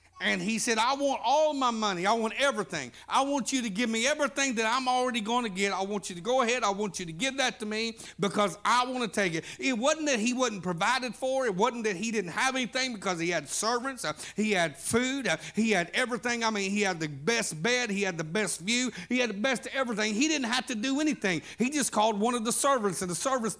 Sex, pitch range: male, 210-260 Hz